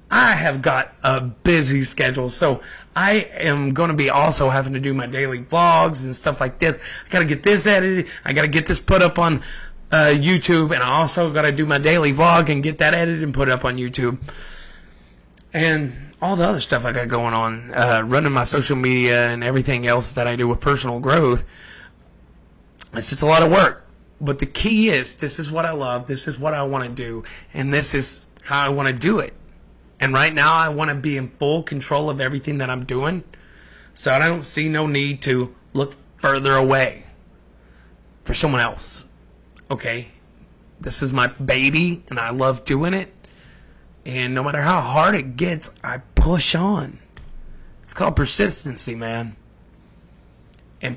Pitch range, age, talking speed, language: 120-155 Hz, 30-49, 195 wpm, English